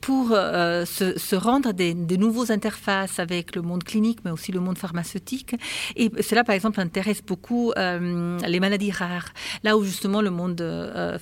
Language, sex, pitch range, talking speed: French, female, 175-215 Hz, 180 wpm